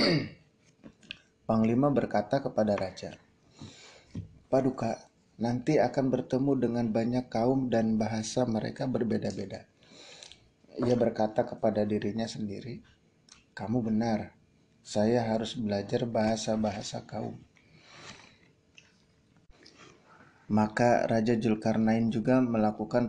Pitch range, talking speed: 110-125 Hz, 85 wpm